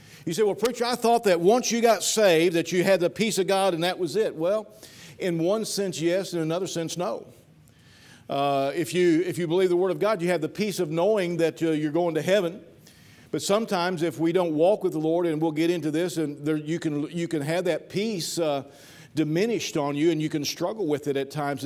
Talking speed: 245 wpm